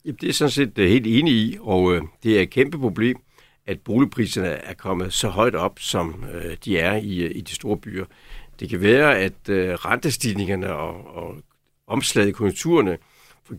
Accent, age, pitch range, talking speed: native, 60-79, 90-120 Hz, 170 wpm